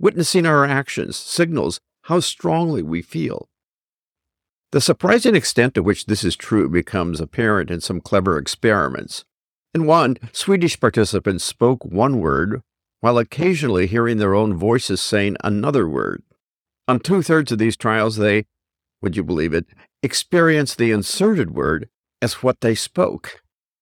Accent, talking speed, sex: American, 140 wpm, male